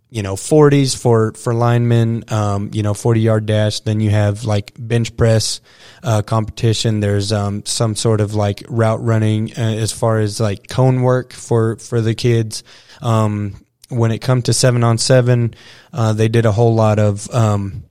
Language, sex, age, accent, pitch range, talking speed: English, male, 20-39, American, 110-125 Hz, 180 wpm